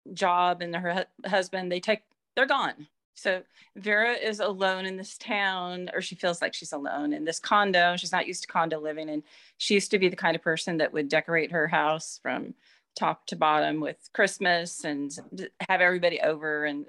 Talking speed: 195 wpm